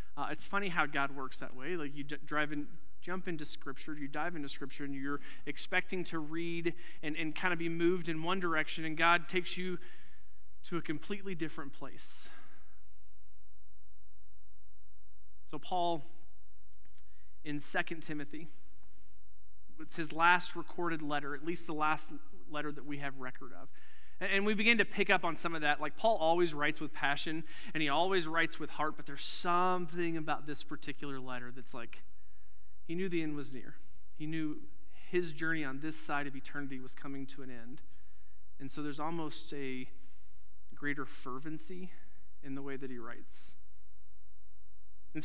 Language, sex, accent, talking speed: English, male, American, 170 wpm